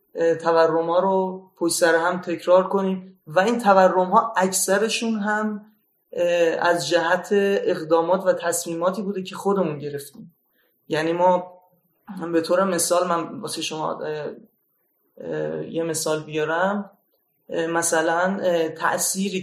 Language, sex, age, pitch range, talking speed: Persian, male, 30-49, 165-195 Hz, 125 wpm